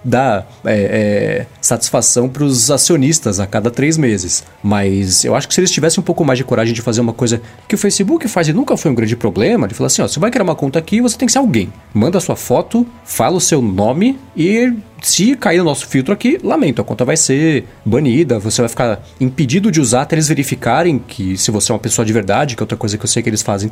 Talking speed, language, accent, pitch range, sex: 255 wpm, Portuguese, Brazilian, 115-170 Hz, male